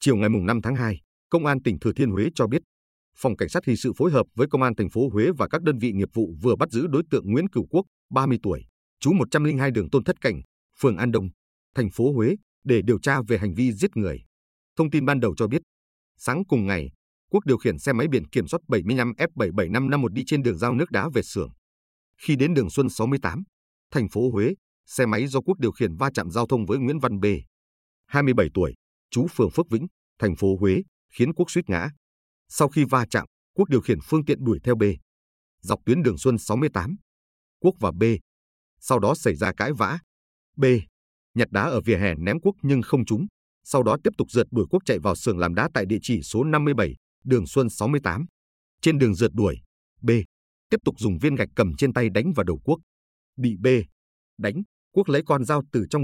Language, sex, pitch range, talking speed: Vietnamese, male, 90-135 Hz, 225 wpm